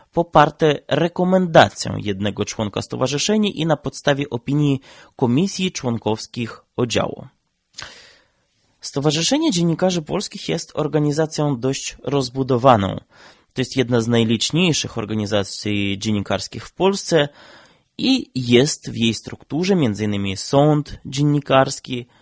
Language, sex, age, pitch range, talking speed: Polish, male, 20-39, 115-160 Hz, 100 wpm